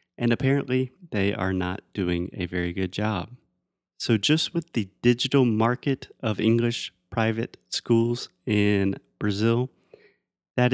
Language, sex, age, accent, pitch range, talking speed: Portuguese, male, 30-49, American, 100-130 Hz, 130 wpm